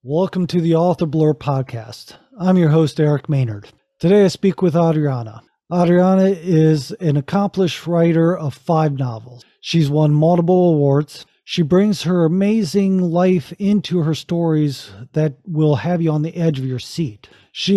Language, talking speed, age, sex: English, 160 wpm, 40-59, male